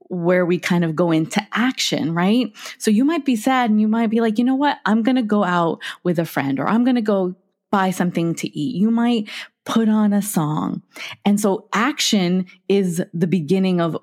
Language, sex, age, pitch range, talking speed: English, female, 20-39, 185-255 Hz, 220 wpm